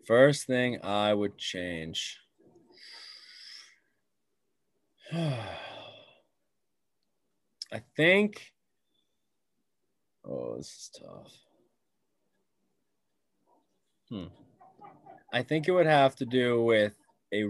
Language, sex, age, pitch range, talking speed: English, male, 20-39, 110-140 Hz, 70 wpm